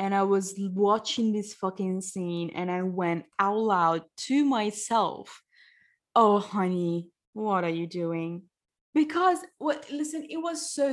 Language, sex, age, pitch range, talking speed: English, female, 20-39, 180-275 Hz, 145 wpm